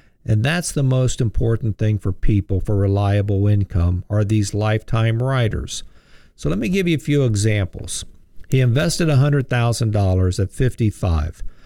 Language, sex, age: English, male, 50-69